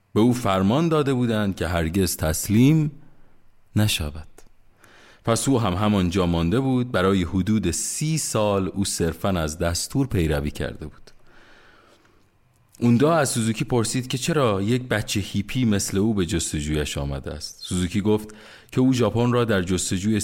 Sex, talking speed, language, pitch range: male, 150 wpm, Persian, 85-120 Hz